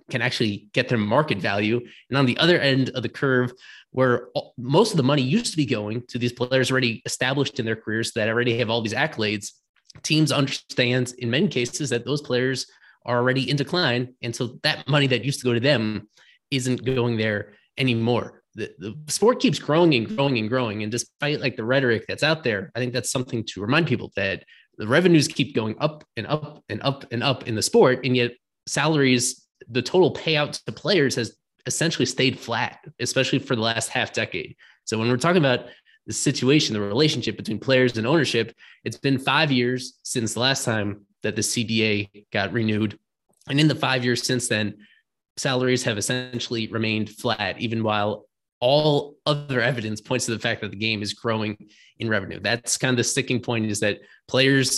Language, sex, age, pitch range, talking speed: English, male, 20-39, 110-135 Hz, 200 wpm